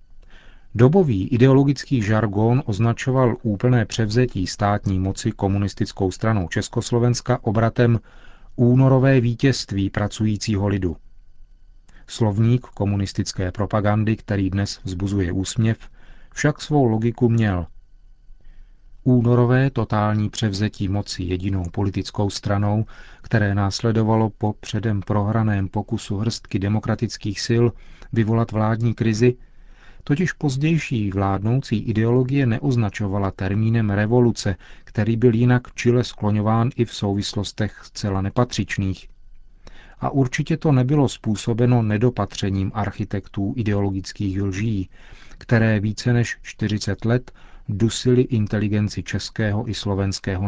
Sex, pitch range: male, 100-120 Hz